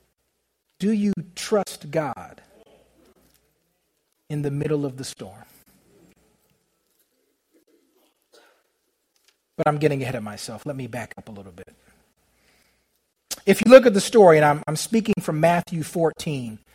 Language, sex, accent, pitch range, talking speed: English, male, American, 155-240 Hz, 130 wpm